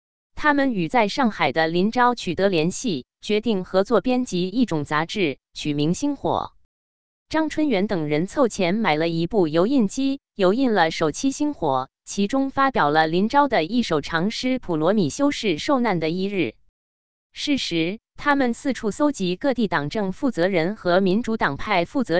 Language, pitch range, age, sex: Chinese, 170-255 Hz, 20-39, female